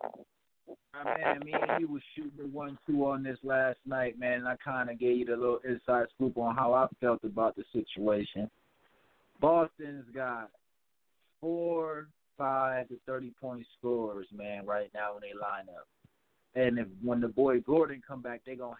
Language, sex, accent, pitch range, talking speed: English, male, American, 115-140 Hz, 180 wpm